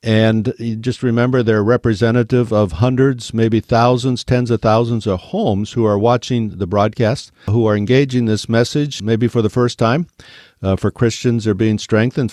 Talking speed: 175 wpm